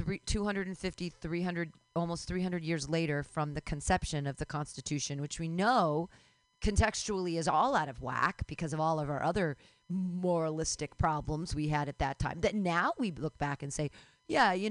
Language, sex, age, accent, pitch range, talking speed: English, female, 40-59, American, 150-210 Hz, 175 wpm